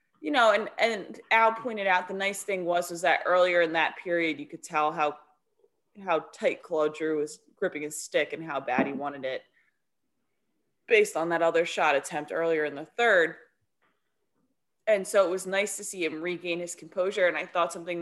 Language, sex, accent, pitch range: English, female, American, 150-175 Hz